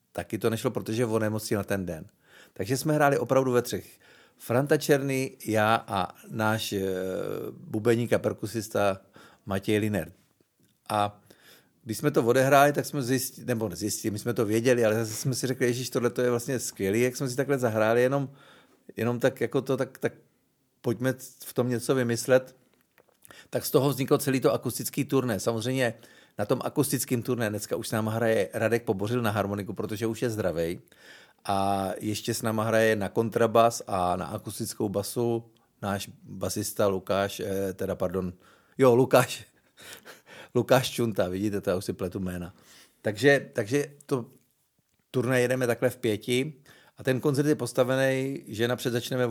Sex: male